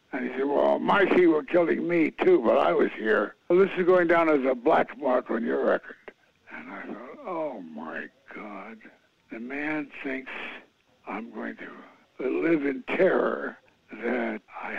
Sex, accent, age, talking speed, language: male, American, 60-79, 170 wpm, English